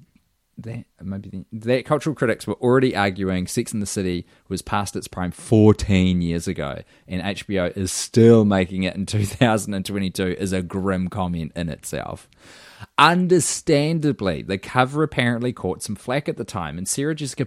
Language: English